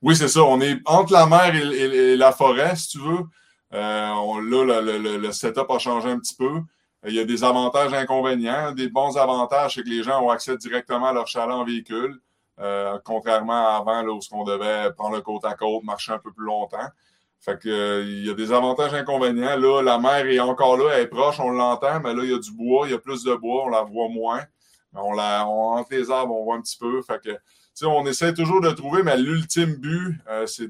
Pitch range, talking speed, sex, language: 110-130 Hz, 255 wpm, male, French